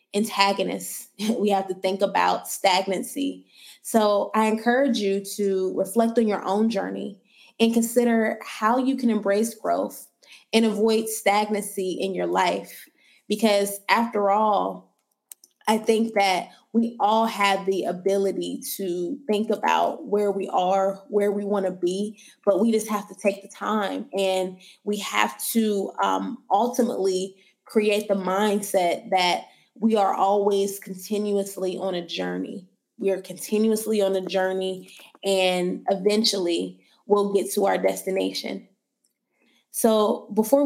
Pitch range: 190-220 Hz